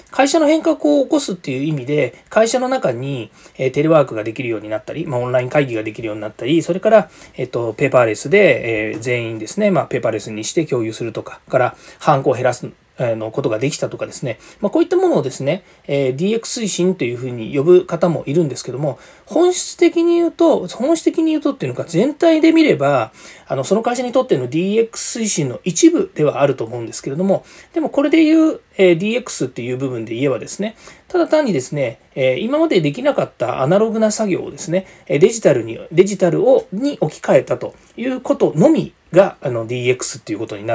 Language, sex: Japanese, male